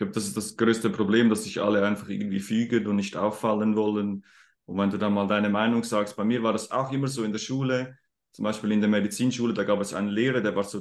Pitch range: 110-135 Hz